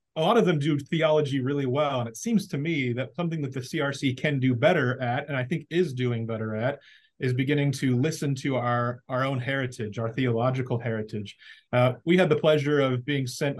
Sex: male